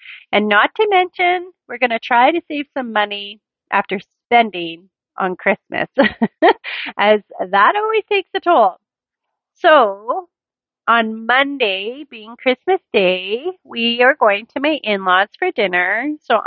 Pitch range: 195-260 Hz